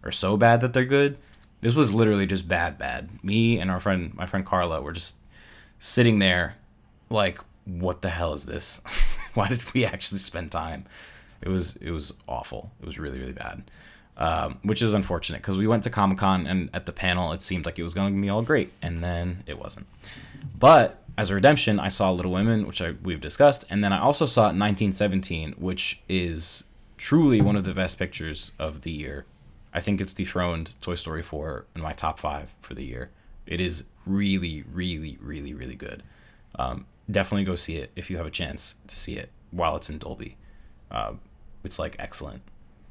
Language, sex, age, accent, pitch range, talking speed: English, male, 20-39, American, 85-105 Hz, 200 wpm